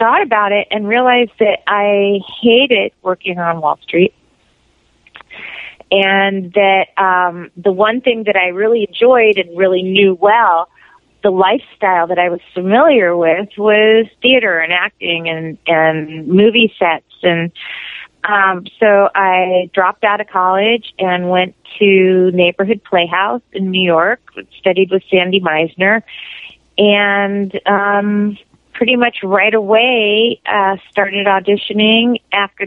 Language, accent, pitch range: English, American, 180-210 Hz